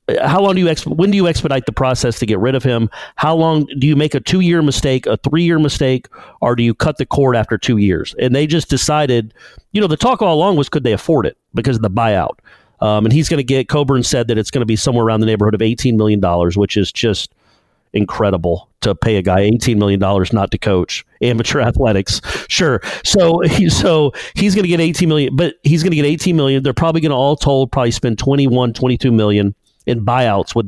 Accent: American